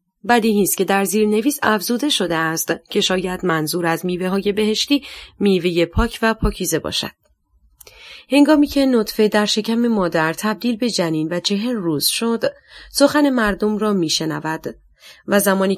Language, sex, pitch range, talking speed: Persian, female, 170-230 Hz, 145 wpm